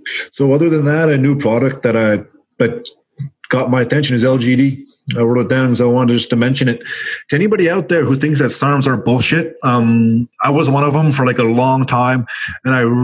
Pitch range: 120-170 Hz